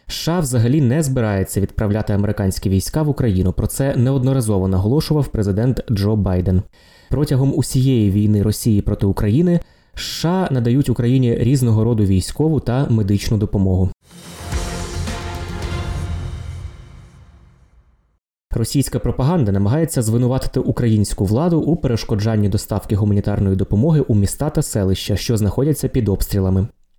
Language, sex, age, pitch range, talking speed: Ukrainian, male, 20-39, 100-130 Hz, 110 wpm